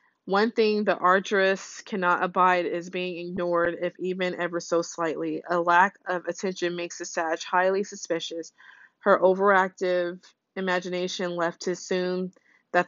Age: 20-39